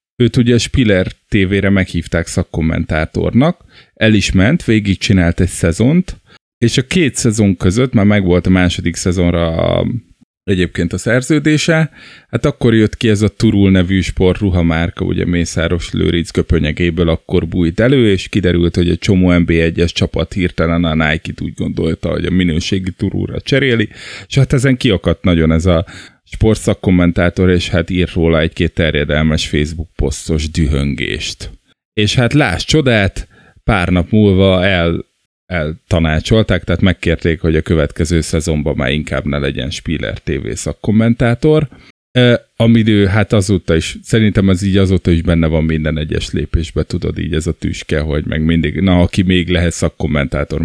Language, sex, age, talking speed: Hungarian, male, 20-39, 155 wpm